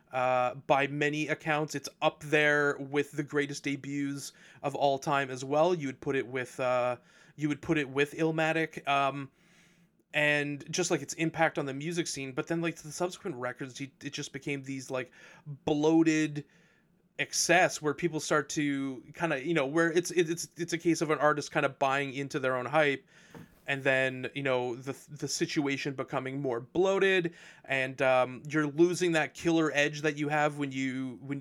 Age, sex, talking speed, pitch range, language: 30-49, male, 185 wpm, 135-160 Hz, English